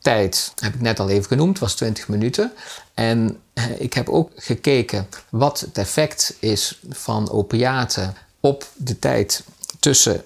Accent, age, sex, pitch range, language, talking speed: Dutch, 50-69, male, 105-130 Hz, Dutch, 145 wpm